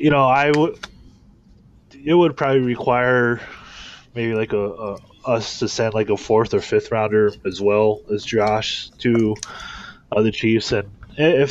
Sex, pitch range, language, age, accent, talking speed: male, 105-125 Hz, English, 20-39, American, 160 wpm